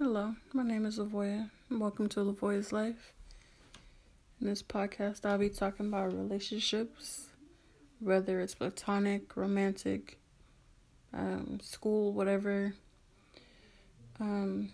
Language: English